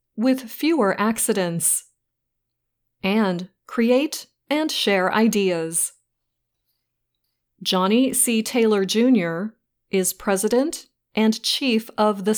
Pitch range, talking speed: 180-240 Hz, 85 wpm